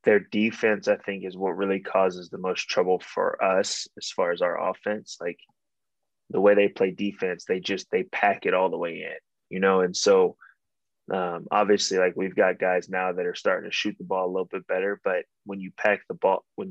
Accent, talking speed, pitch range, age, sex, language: American, 225 wpm, 90-110 Hz, 20-39, male, English